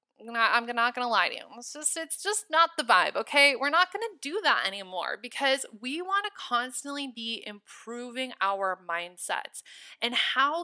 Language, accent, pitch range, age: English, American, 200-275 Hz, 20-39